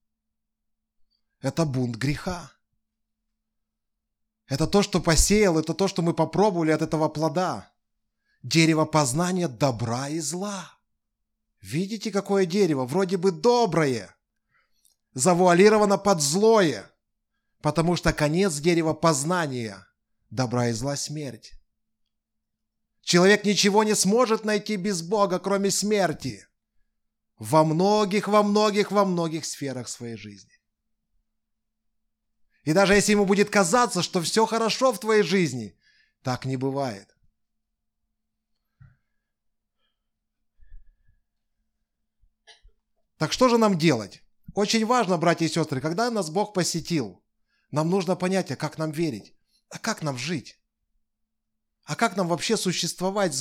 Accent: native